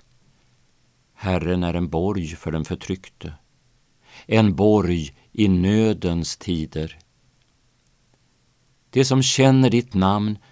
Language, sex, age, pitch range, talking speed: Swedish, male, 50-69, 90-120 Hz, 95 wpm